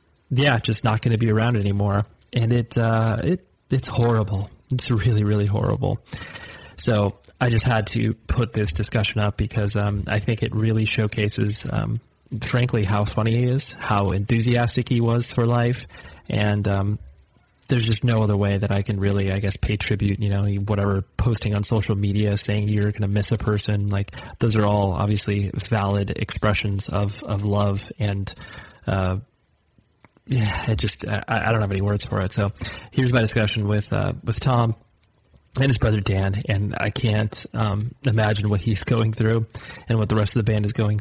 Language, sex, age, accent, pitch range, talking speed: English, male, 30-49, American, 105-115 Hz, 185 wpm